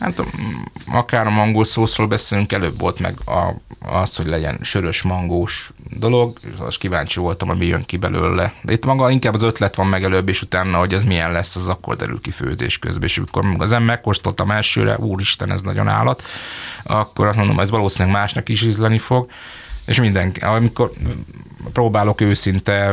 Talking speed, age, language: 180 wpm, 20-39, Hungarian